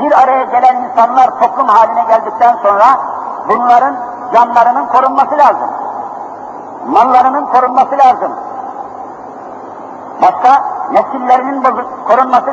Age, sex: 50-69, male